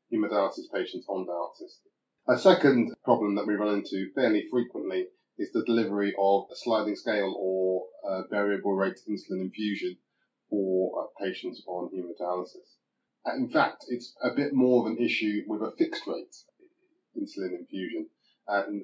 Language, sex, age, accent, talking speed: English, male, 30-49, British, 145 wpm